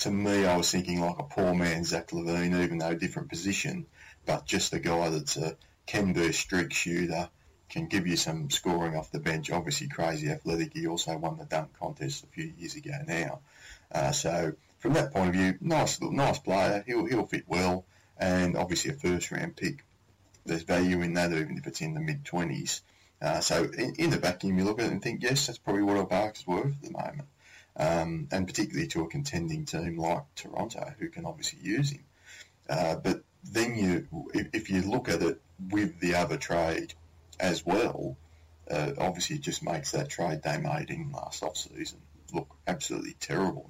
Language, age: English, 20-39